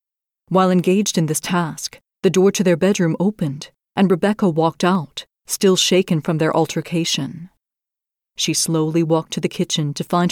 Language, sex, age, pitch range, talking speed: English, female, 40-59, 165-195 Hz, 165 wpm